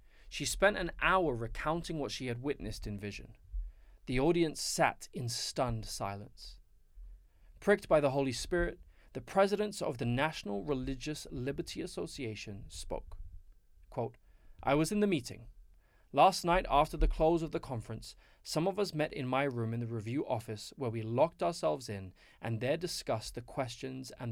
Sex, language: male, English